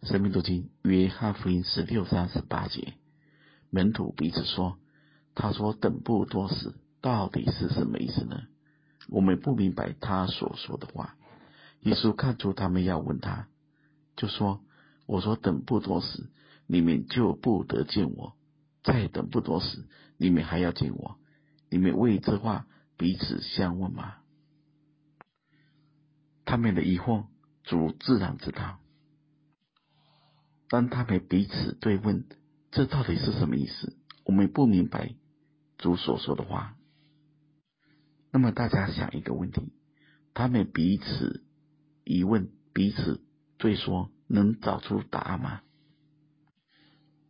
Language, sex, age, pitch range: Chinese, male, 50-69, 95-150 Hz